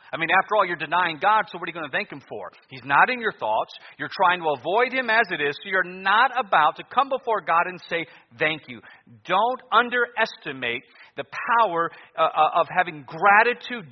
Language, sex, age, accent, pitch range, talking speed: English, male, 40-59, American, 160-225 Hz, 210 wpm